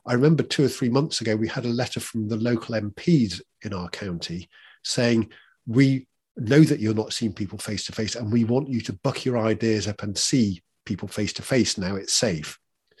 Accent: British